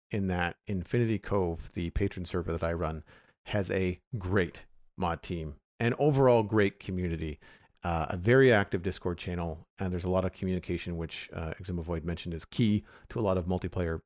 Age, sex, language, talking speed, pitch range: 40-59, male, English, 180 wpm, 90-115 Hz